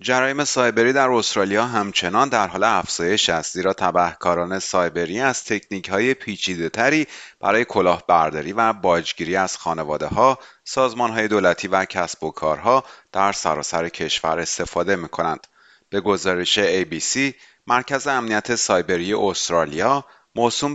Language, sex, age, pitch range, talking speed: Persian, male, 30-49, 95-135 Hz, 115 wpm